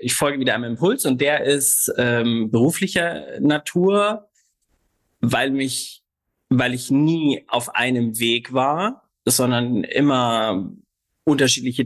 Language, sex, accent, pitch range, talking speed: German, male, German, 115-140 Hz, 115 wpm